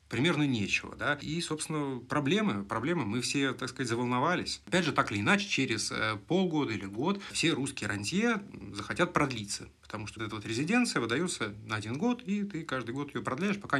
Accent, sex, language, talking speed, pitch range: native, male, Russian, 185 wpm, 110-160 Hz